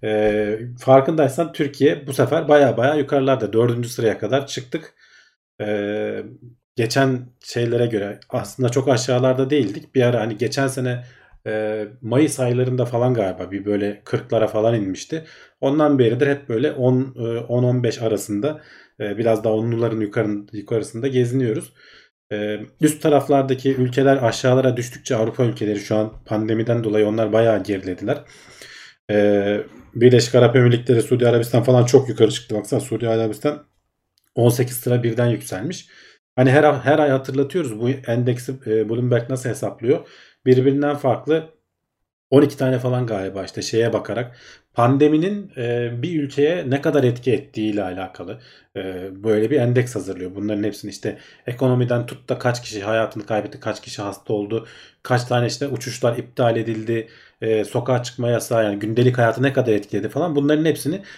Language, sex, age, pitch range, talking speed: Turkish, male, 40-59, 110-135 Hz, 145 wpm